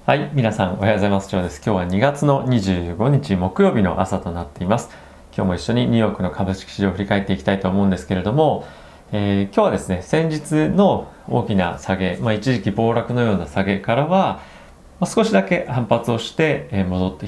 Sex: male